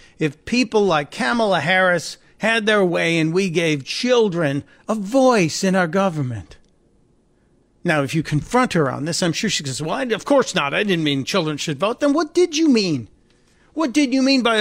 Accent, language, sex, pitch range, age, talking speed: American, English, male, 165-215 Hz, 50-69, 200 wpm